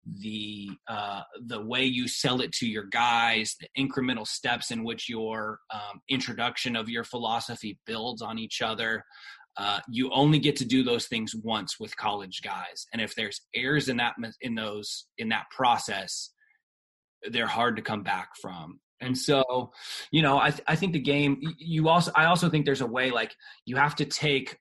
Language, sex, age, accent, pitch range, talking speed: English, male, 20-39, American, 110-135 Hz, 185 wpm